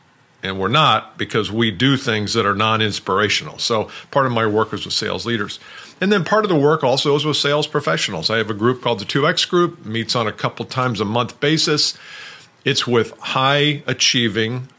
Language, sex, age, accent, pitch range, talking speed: English, male, 50-69, American, 115-150 Hz, 200 wpm